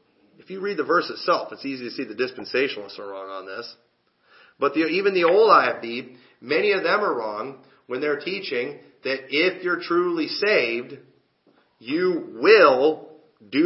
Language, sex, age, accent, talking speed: English, male, 40-59, American, 165 wpm